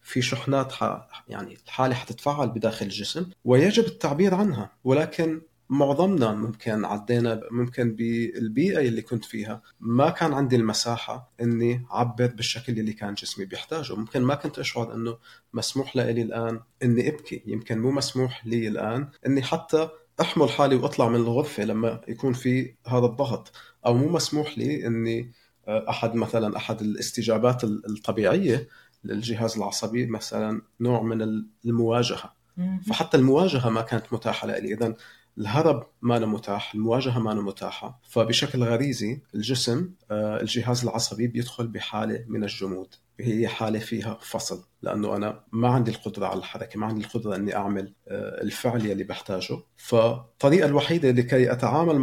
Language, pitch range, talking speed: Arabic, 110-140 Hz, 140 wpm